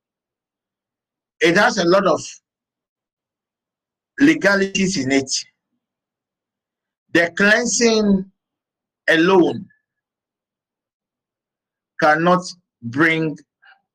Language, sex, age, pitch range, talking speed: English, male, 50-69, 155-205 Hz, 55 wpm